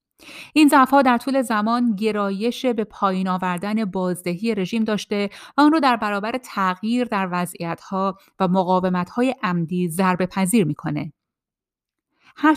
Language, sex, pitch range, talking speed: Persian, female, 180-230 Hz, 130 wpm